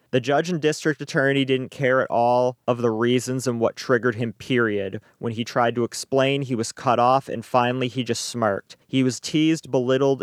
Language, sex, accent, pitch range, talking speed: English, male, American, 115-135 Hz, 205 wpm